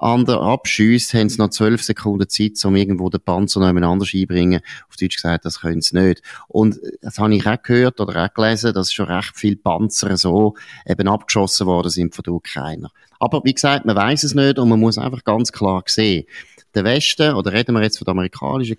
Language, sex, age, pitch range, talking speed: German, male, 30-49, 95-120 Hz, 210 wpm